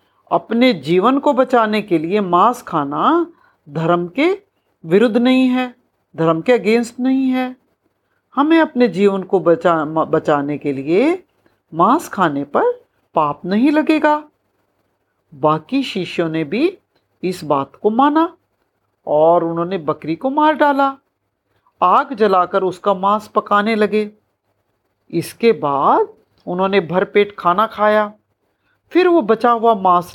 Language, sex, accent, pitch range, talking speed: Hindi, female, native, 175-270 Hz, 125 wpm